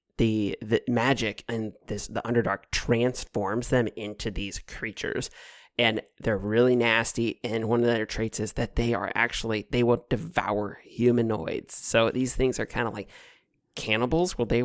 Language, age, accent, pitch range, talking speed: English, 20-39, American, 115-140 Hz, 165 wpm